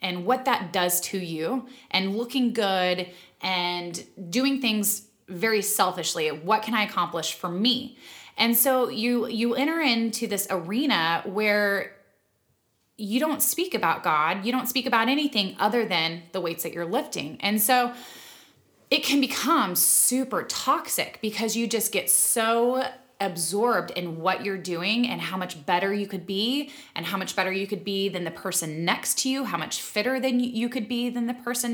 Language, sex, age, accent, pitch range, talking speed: English, female, 20-39, American, 180-240 Hz, 175 wpm